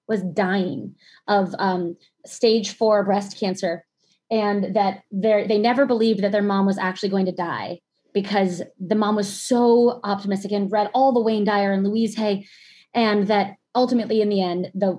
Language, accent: English, American